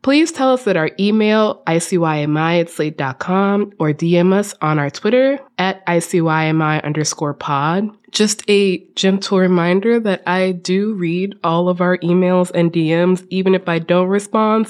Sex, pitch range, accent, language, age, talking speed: female, 165-215 Hz, American, English, 20-39, 155 wpm